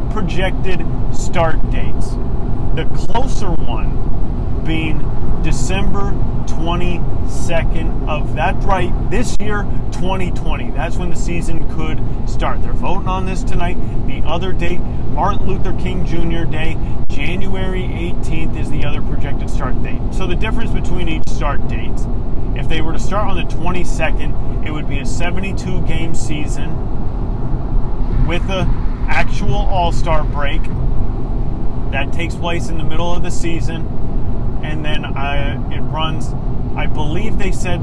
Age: 30-49